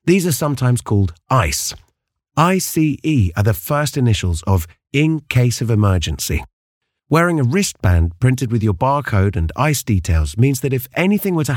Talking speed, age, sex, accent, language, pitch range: 160 wpm, 30-49, male, British, English, 100-150 Hz